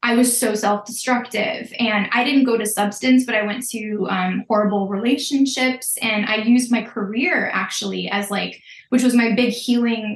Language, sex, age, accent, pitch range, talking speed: English, female, 10-29, American, 205-240 Hz, 175 wpm